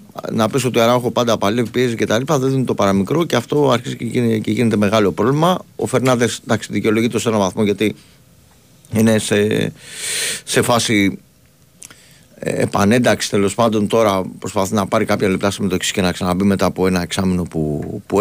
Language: Greek